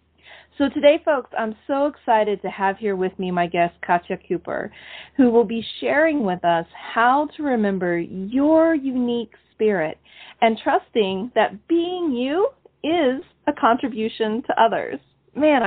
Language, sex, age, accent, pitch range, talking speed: English, female, 40-59, American, 185-265 Hz, 145 wpm